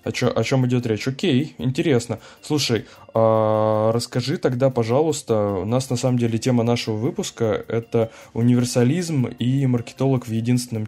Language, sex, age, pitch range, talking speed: Russian, male, 10-29, 110-125 Hz, 150 wpm